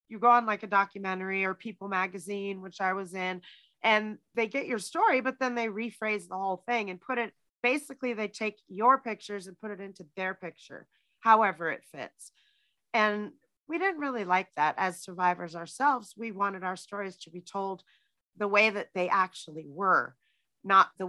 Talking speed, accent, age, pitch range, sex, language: 190 wpm, American, 30-49, 175-215 Hz, female, English